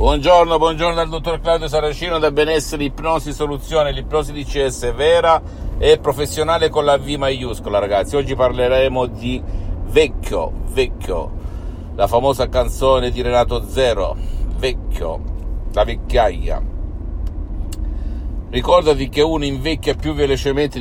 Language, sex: Italian, male